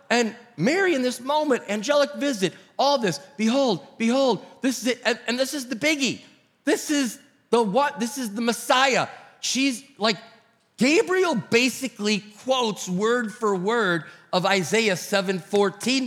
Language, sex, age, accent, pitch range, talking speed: English, male, 40-59, American, 185-245 Hz, 145 wpm